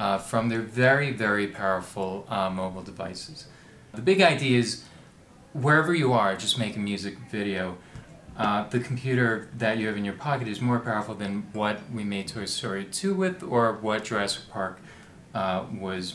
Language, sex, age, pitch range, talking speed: English, male, 30-49, 100-125 Hz, 175 wpm